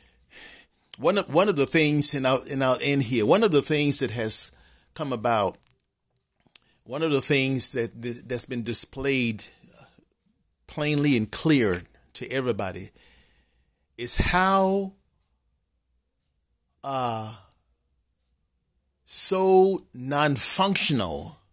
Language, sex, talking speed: English, male, 100 wpm